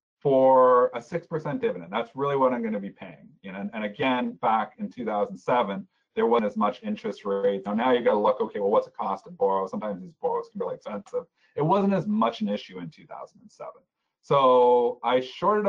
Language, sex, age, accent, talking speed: English, male, 40-59, American, 205 wpm